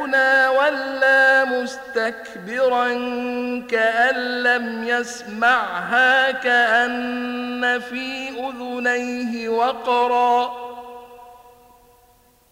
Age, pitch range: 50-69, 245-260 Hz